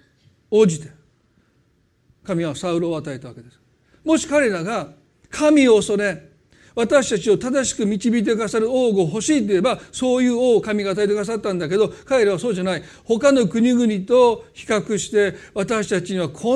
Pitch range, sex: 170-240 Hz, male